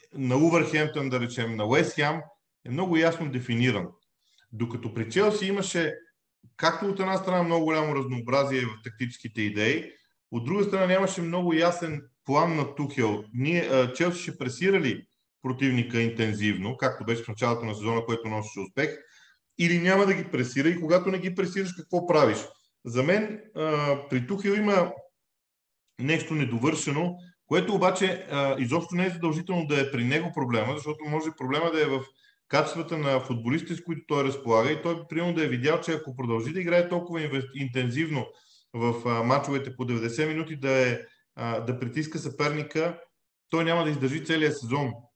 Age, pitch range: 40-59, 130-170 Hz